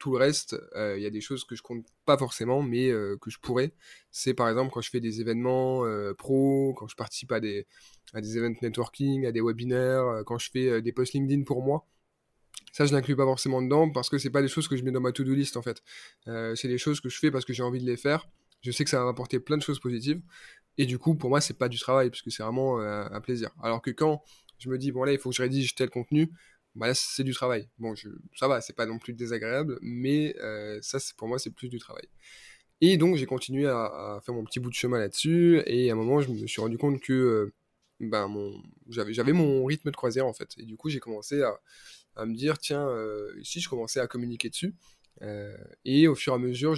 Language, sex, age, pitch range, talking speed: French, male, 20-39, 115-140 Hz, 270 wpm